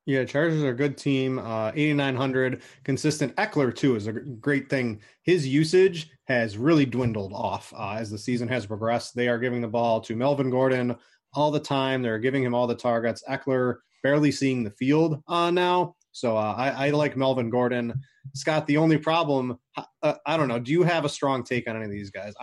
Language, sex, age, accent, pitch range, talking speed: English, male, 20-39, American, 120-150 Hz, 210 wpm